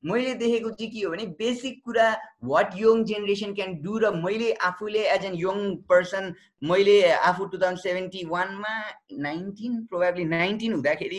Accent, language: native, Kannada